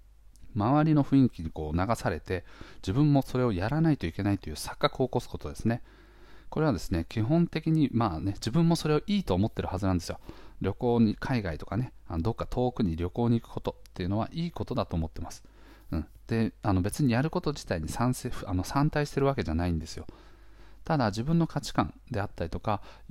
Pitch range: 90-130 Hz